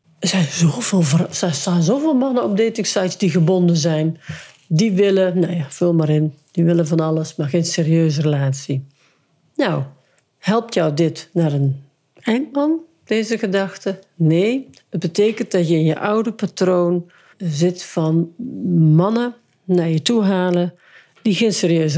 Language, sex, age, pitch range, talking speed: Dutch, female, 50-69, 160-200 Hz, 155 wpm